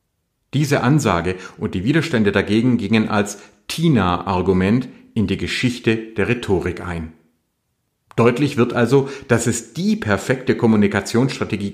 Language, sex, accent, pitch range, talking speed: German, male, German, 100-130 Hz, 120 wpm